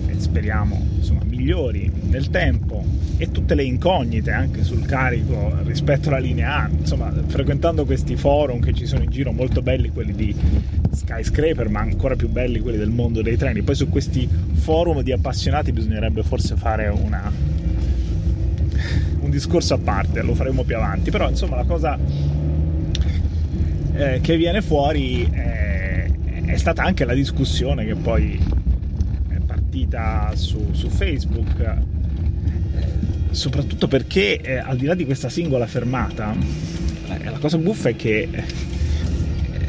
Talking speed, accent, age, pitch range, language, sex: 140 wpm, native, 20-39, 80-90 Hz, Italian, male